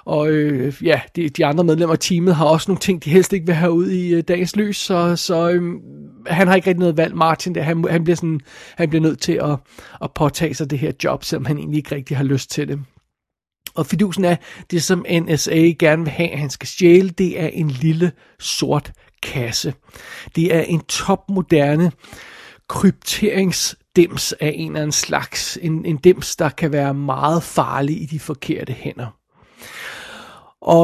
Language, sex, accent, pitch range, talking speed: Danish, male, native, 150-185 Hz, 190 wpm